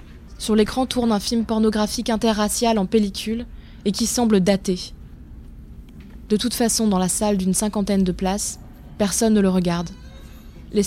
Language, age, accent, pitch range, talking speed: French, 20-39, French, 195-225 Hz, 155 wpm